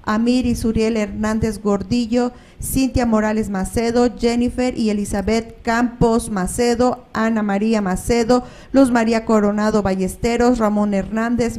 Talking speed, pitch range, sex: 115 wpm, 215-250 Hz, female